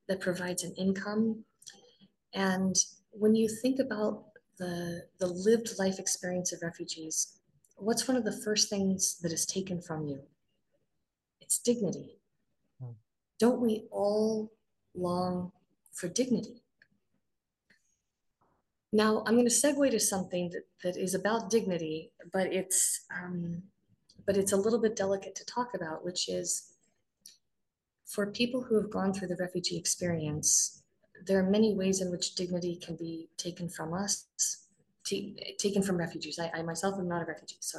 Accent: American